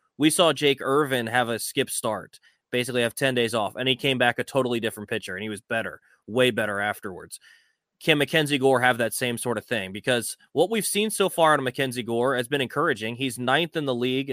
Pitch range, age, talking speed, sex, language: 115-135 Hz, 20-39, 230 wpm, male, English